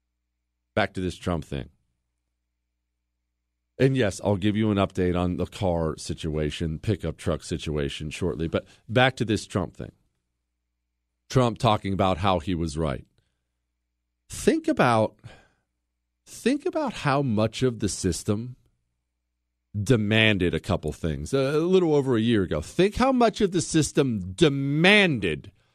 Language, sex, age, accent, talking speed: English, male, 40-59, American, 135 wpm